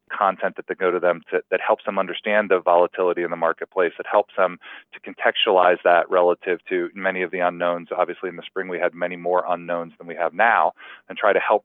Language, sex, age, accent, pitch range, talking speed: English, male, 30-49, American, 90-100 Hz, 230 wpm